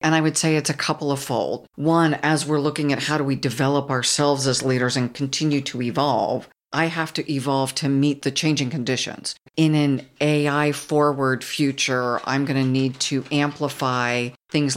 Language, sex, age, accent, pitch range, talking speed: English, female, 50-69, American, 130-150 Hz, 185 wpm